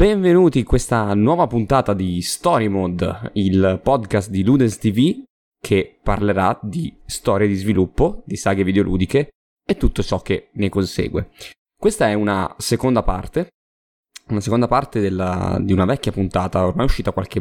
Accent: native